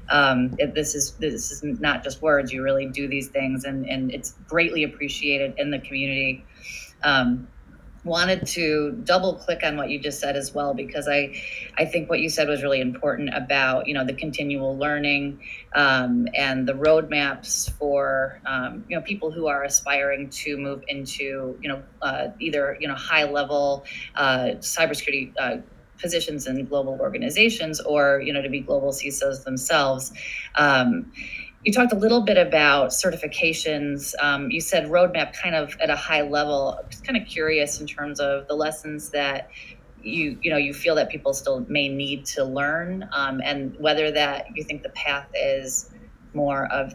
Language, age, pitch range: English, 30-49, 140-160 Hz